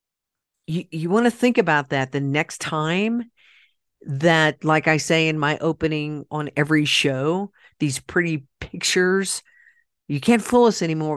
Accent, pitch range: American, 145-190 Hz